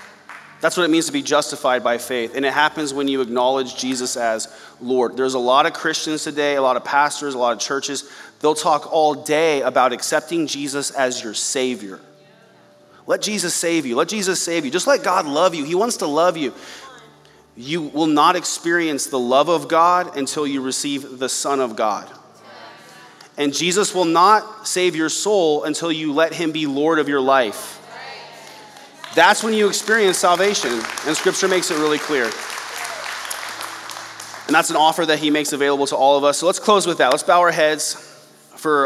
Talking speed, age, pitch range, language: 190 wpm, 30-49, 130-160 Hz, English